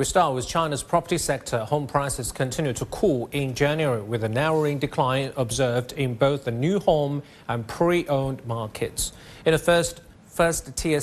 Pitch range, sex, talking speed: 125-155 Hz, male, 170 wpm